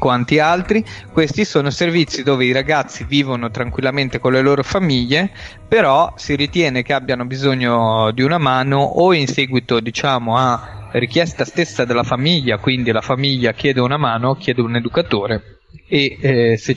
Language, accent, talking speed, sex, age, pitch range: Italian, native, 155 wpm, male, 30-49, 120-140 Hz